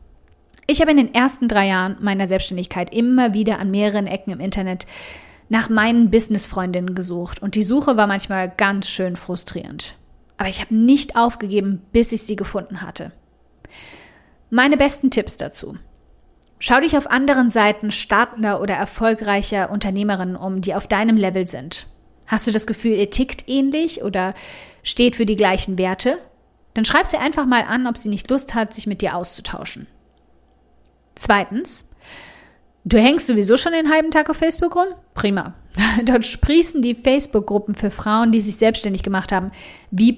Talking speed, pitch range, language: 165 wpm, 190-245 Hz, German